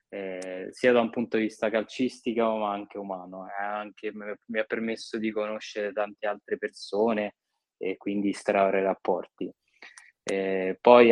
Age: 20-39